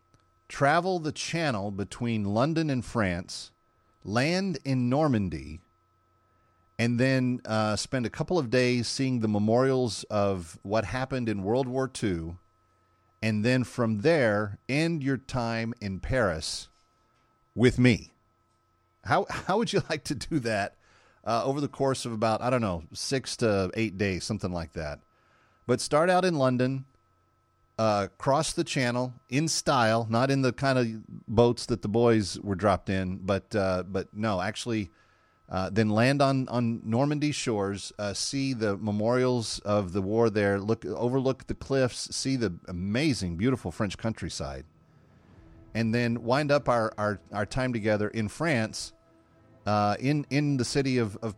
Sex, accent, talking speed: male, American, 155 wpm